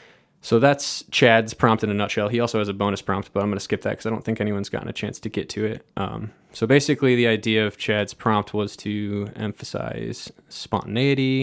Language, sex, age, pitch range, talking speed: English, male, 20-39, 100-115 Hz, 225 wpm